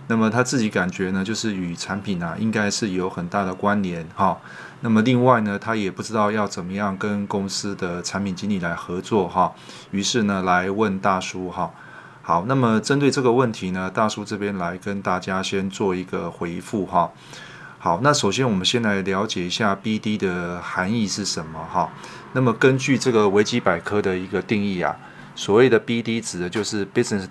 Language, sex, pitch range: Chinese, male, 95-110 Hz